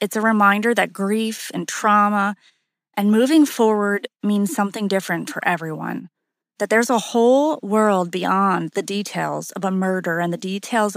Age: 30-49